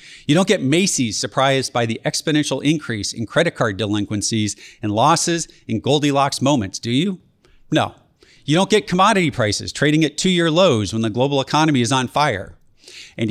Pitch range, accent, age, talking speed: 115-150 Hz, American, 40-59, 170 wpm